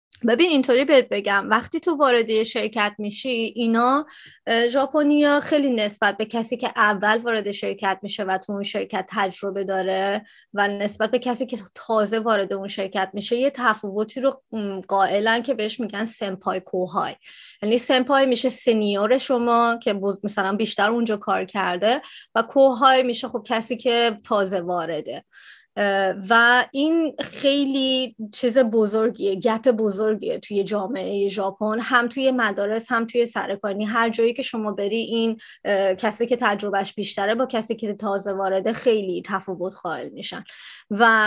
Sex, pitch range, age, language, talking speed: female, 200-245 Hz, 30-49, Persian, 145 wpm